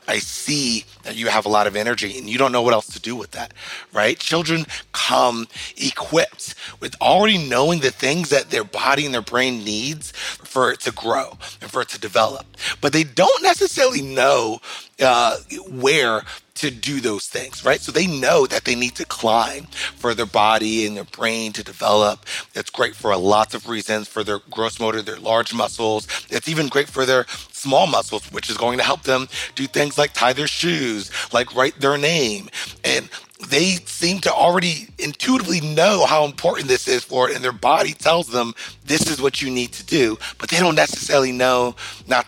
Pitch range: 110-145 Hz